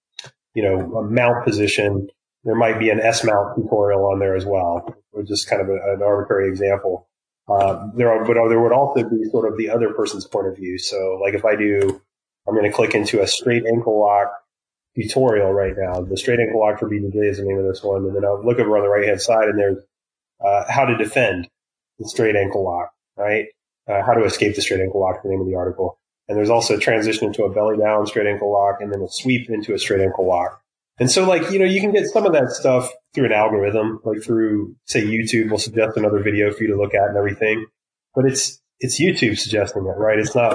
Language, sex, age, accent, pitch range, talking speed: English, male, 30-49, American, 100-115 Hz, 240 wpm